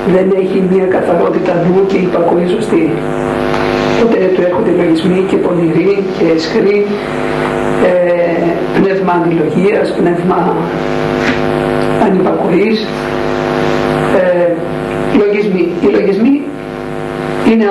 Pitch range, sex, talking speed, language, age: 165-205 Hz, female, 85 wpm, Greek, 50-69